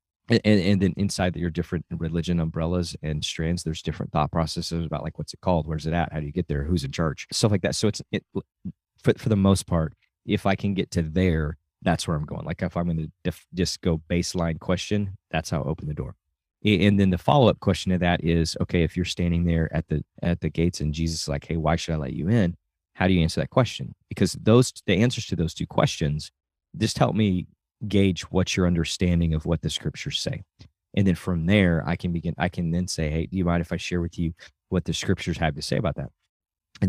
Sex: male